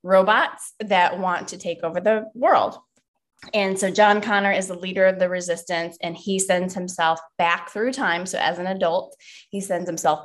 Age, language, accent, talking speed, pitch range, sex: 20-39, English, American, 185 wpm, 170-200 Hz, female